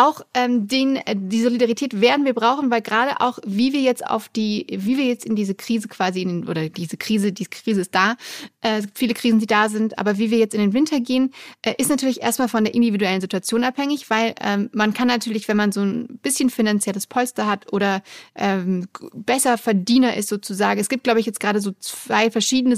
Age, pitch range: 30-49, 200-245 Hz